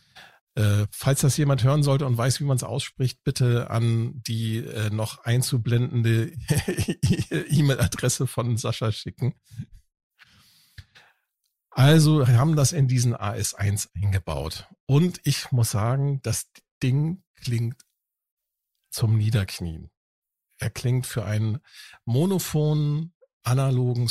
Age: 50-69